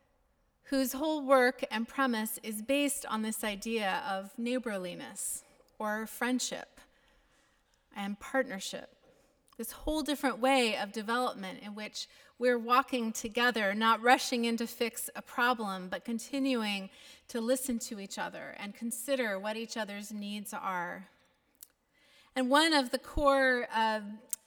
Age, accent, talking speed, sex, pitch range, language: 30-49, American, 130 wpm, female, 220-270 Hz, English